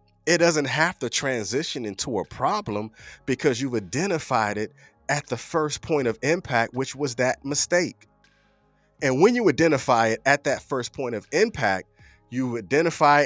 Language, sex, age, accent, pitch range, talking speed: English, male, 30-49, American, 100-145 Hz, 160 wpm